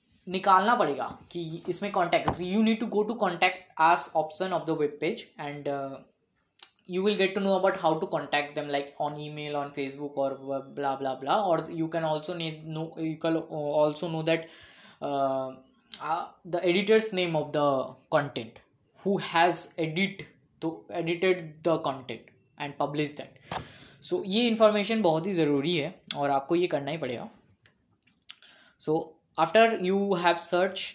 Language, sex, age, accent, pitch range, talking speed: English, female, 20-39, Indian, 150-195 Hz, 145 wpm